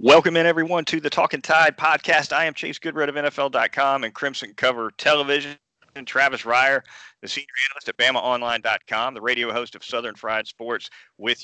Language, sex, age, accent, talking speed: English, male, 40-59, American, 180 wpm